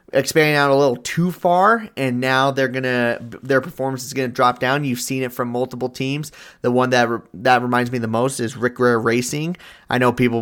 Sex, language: male, English